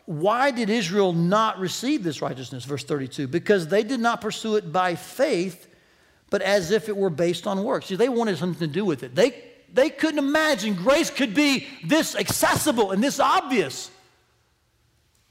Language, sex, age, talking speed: English, male, 60-79, 175 wpm